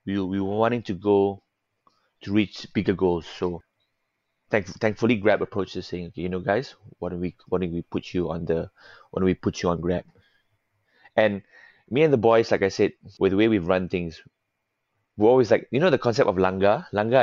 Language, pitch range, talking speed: English, 90-110 Hz, 215 wpm